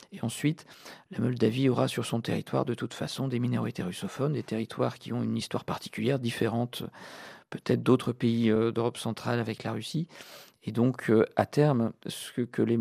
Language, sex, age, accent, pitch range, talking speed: French, male, 40-59, French, 110-125 Hz, 180 wpm